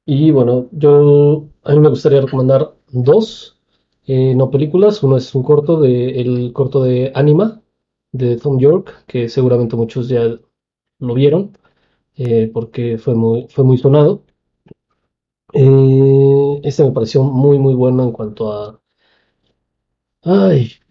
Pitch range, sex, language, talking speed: 115-145 Hz, male, Spanish, 140 wpm